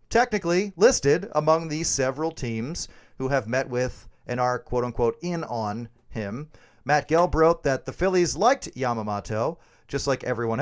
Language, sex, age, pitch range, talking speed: English, male, 40-59, 110-155 Hz, 155 wpm